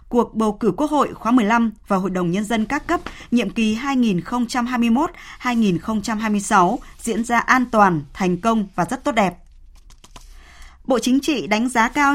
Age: 20-39